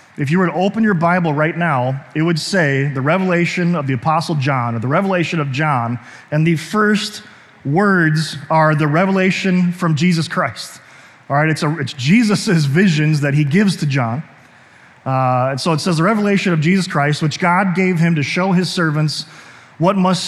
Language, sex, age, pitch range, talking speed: English, male, 30-49, 150-180 Hz, 190 wpm